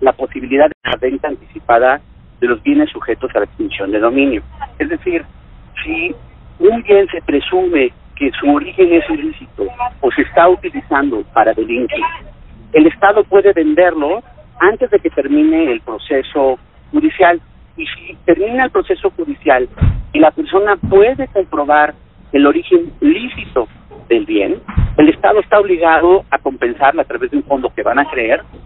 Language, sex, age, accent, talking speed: Spanish, male, 50-69, Mexican, 155 wpm